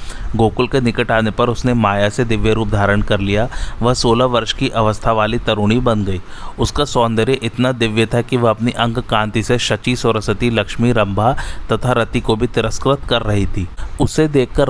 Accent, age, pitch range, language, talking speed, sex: native, 30-49, 105-125 Hz, Hindi, 190 wpm, male